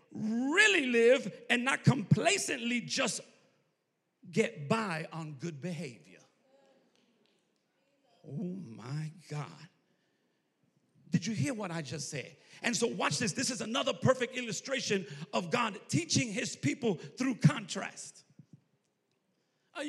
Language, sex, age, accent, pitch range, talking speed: English, male, 40-59, American, 185-270 Hz, 115 wpm